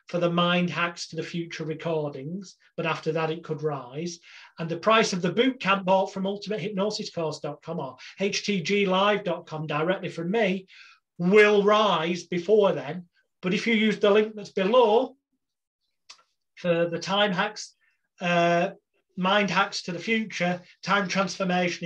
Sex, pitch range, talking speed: male, 160-190 Hz, 145 wpm